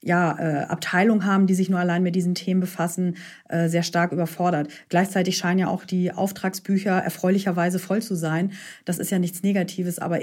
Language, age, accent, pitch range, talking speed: German, 40-59, German, 175-205 Hz, 190 wpm